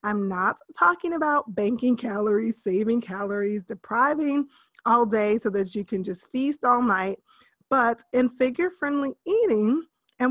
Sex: female